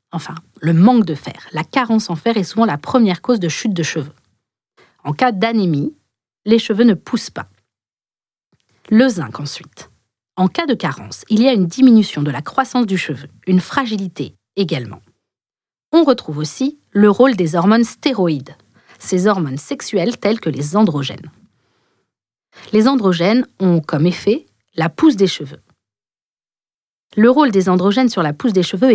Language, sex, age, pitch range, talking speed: French, female, 40-59, 155-235 Hz, 165 wpm